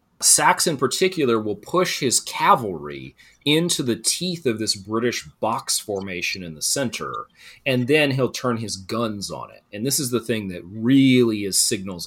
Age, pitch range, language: 30-49, 85-125 Hz, English